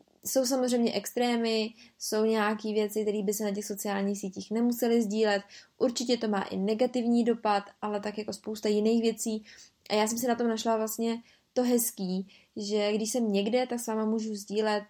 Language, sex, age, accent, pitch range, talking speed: Czech, female, 20-39, native, 205-230 Hz, 180 wpm